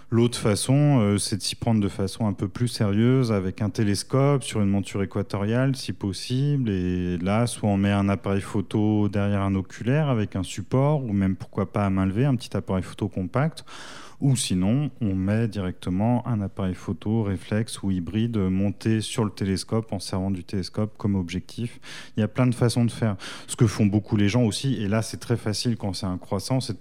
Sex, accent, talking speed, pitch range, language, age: male, French, 215 wpm, 100-120 Hz, French, 30-49